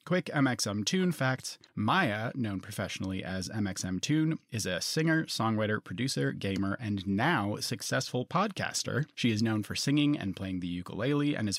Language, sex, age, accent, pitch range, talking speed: English, male, 30-49, American, 100-140 Hz, 160 wpm